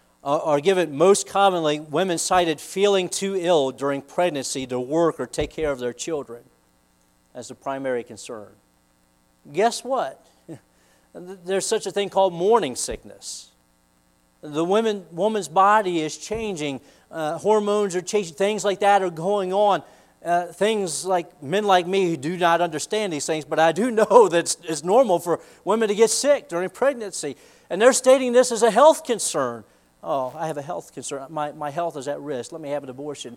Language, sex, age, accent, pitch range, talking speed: English, male, 40-59, American, 135-200 Hz, 180 wpm